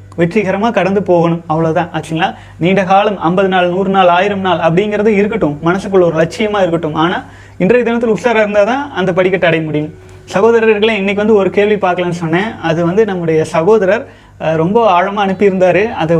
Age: 30-49